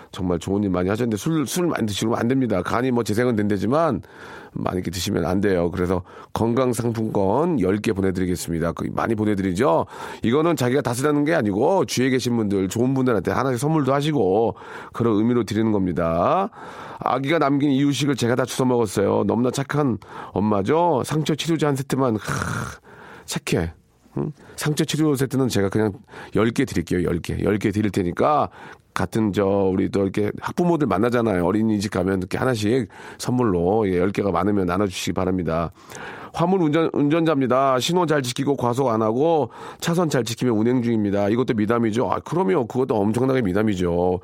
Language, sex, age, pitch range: Korean, male, 40-59, 95-135 Hz